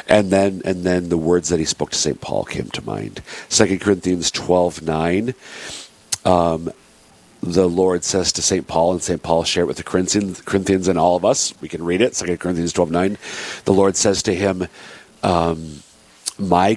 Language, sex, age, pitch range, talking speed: English, male, 50-69, 75-95 Hz, 185 wpm